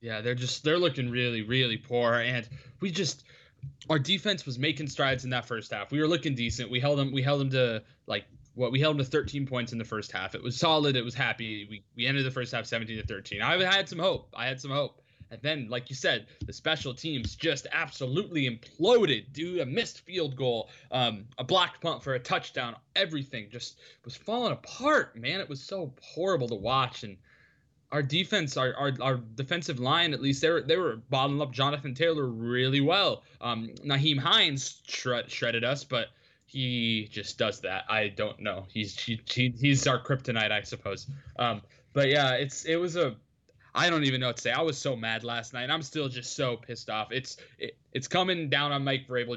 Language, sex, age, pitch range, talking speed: English, male, 20-39, 120-145 Hz, 215 wpm